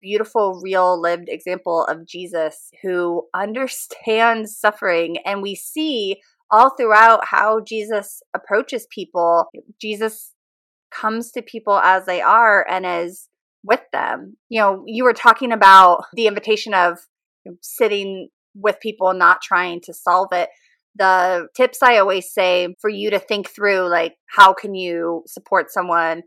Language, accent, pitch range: English, American, 175-220 Hz